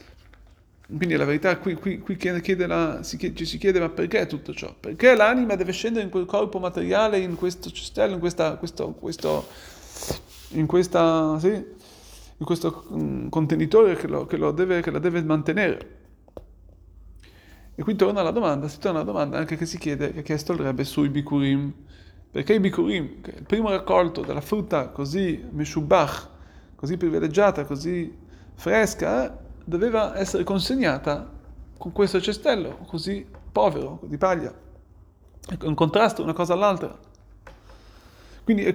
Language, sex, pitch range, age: Italian, male, 140-200 Hz, 30-49